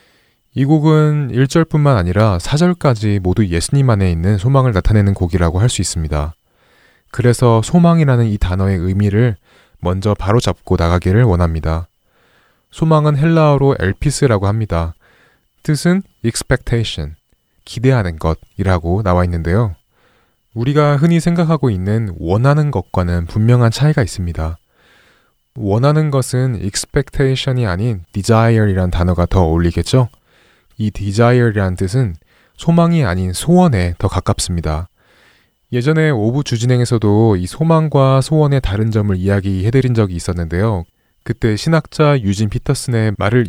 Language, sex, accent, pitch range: Korean, male, native, 95-135 Hz